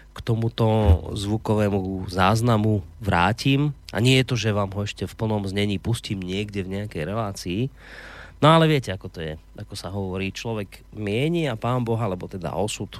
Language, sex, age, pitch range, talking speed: Slovak, male, 30-49, 95-120 Hz, 175 wpm